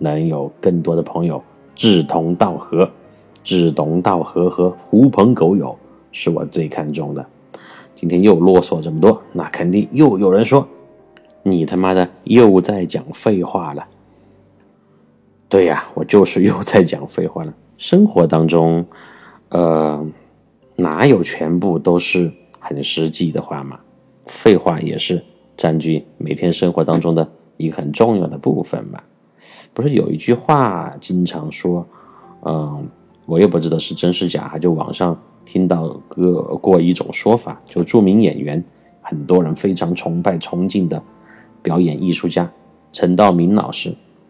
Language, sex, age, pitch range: Chinese, male, 30-49, 80-95 Hz